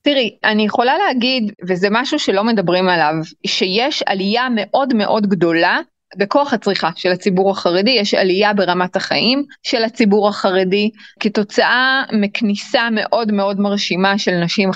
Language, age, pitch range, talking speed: Hebrew, 30-49, 185-240 Hz, 135 wpm